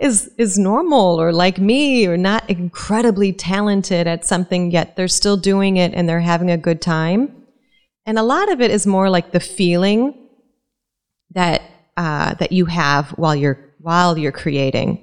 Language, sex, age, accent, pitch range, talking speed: English, female, 30-49, American, 165-210 Hz, 170 wpm